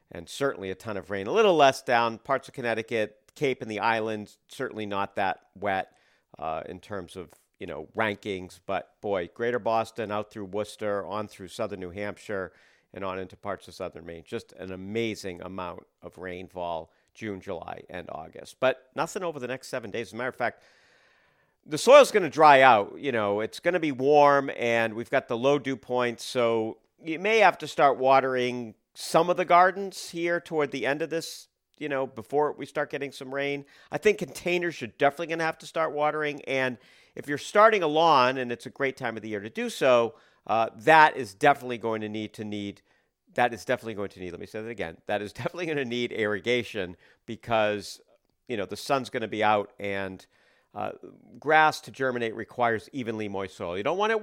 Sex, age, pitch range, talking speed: male, 50-69, 105-140 Hz, 210 wpm